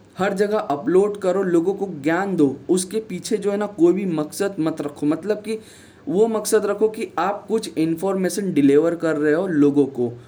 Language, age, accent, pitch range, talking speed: Hindi, 20-39, native, 145-185 Hz, 195 wpm